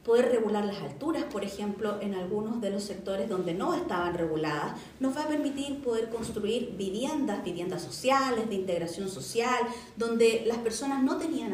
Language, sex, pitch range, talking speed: Spanish, female, 210-280 Hz, 165 wpm